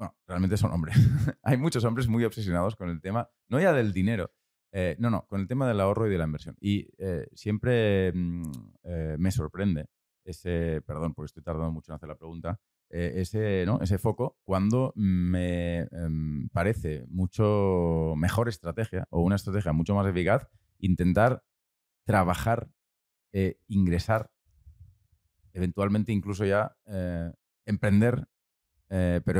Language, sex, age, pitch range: Spanish, male, 30-49, 85-105 Hz